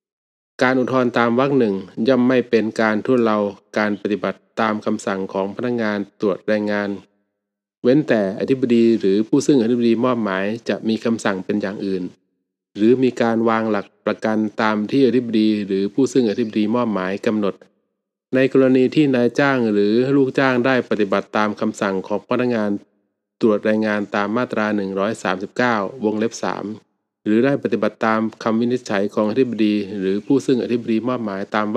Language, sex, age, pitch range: Thai, male, 20-39, 105-125 Hz